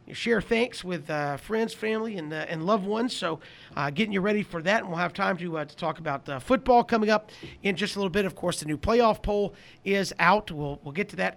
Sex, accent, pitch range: male, American, 160-210 Hz